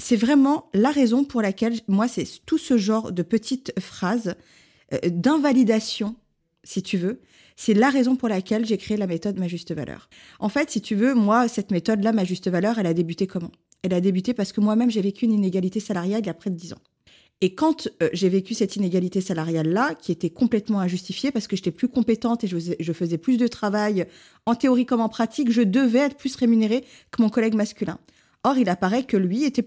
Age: 20-39